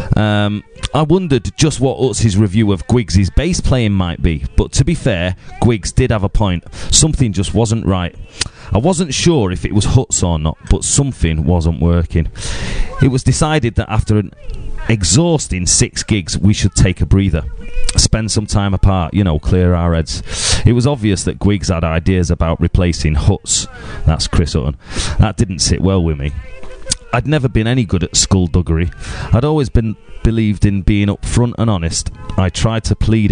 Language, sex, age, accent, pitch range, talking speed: English, male, 30-49, British, 85-110 Hz, 180 wpm